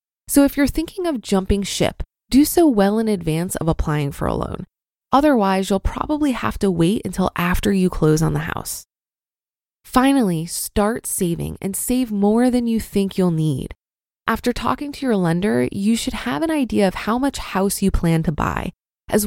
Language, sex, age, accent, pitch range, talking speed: English, female, 20-39, American, 175-255 Hz, 185 wpm